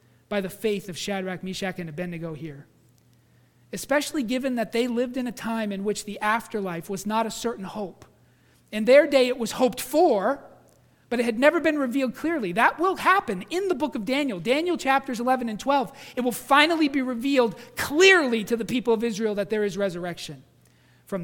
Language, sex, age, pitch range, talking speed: English, male, 40-59, 180-270 Hz, 195 wpm